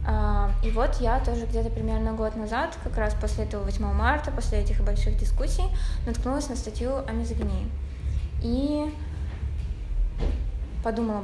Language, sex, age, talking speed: Russian, female, 20-39, 135 wpm